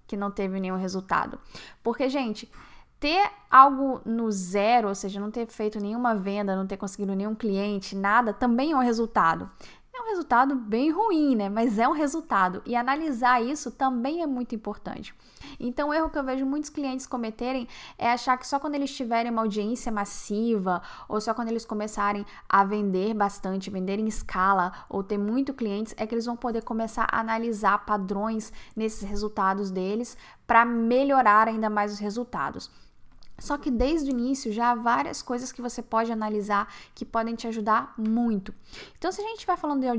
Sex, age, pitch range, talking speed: female, 10-29, 205-245 Hz, 180 wpm